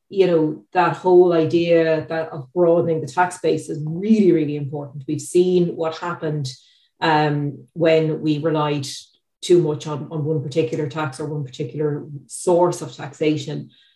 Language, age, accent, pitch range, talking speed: English, 30-49, Irish, 155-175 Hz, 155 wpm